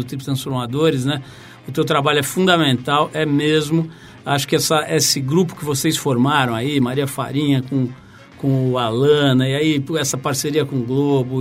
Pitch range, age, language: 135-165 Hz, 60-79, Portuguese